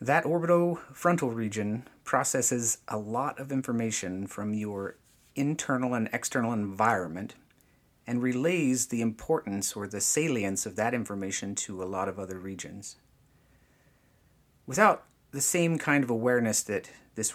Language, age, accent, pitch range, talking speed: English, 30-49, American, 100-145 Hz, 130 wpm